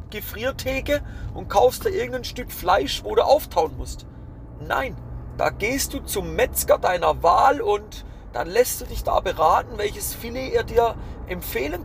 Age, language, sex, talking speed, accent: 40-59, German, male, 155 wpm, German